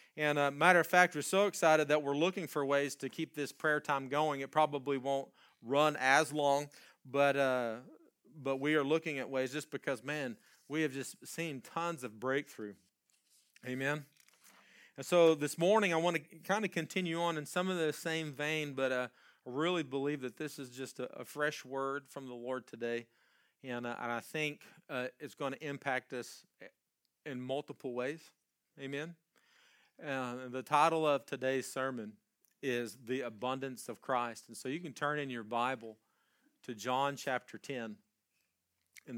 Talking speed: 180 wpm